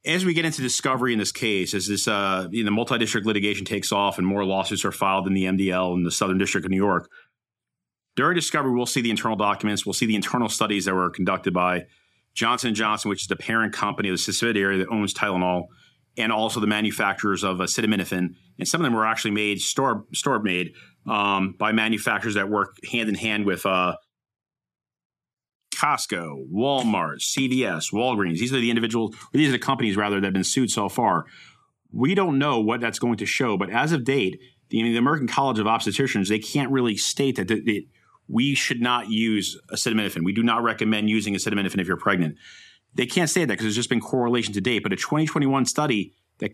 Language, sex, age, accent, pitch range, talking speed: English, male, 30-49, American, 100-120 Hz, 200 wpm